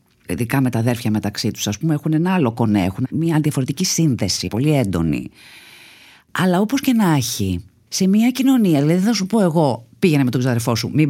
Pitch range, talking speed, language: 125-175 Hz, 200 wpm, Greek